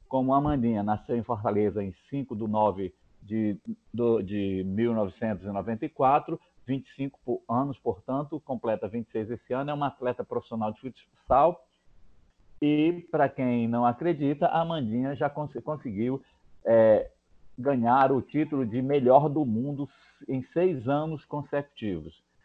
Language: Portuguese